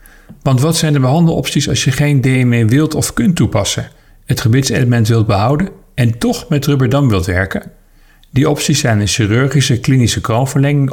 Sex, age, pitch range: male, 40-59, 105-140 Hz